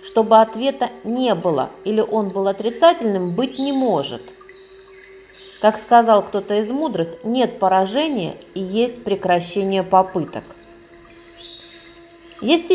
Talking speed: 110 wpm